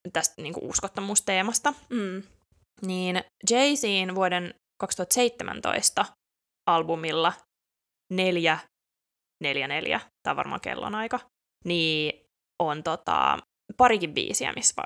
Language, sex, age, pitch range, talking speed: Finnish, female, 20-39, 165-215 Hz, 90 wpm